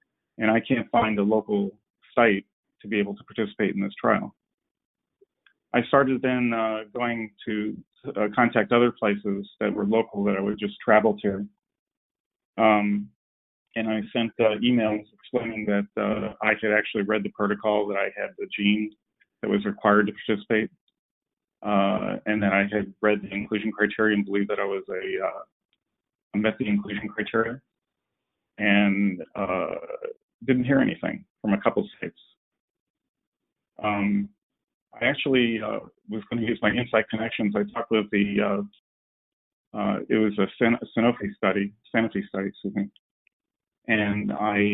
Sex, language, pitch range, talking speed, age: male, English, 100-115 Hz, 155 wpm, 40-59